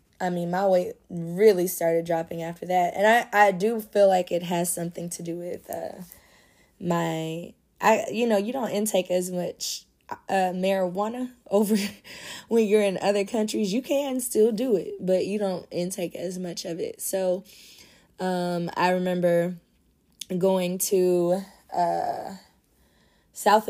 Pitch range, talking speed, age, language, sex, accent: 180-220 Hz, 150 wpm, 20-39, English, female, American